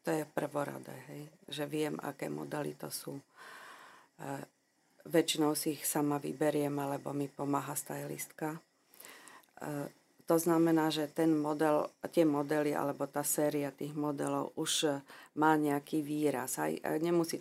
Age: 50-69